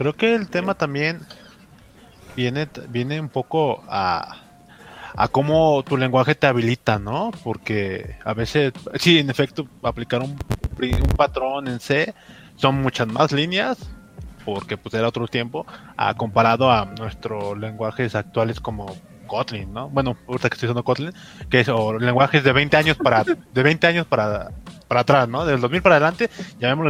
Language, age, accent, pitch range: Spanish, 20-39, Mexican, 115-155 Hz